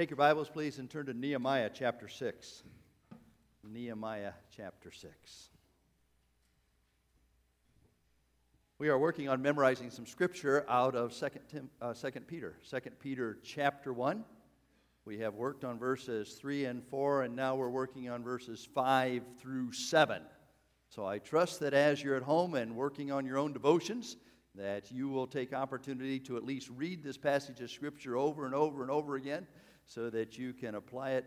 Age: 50-69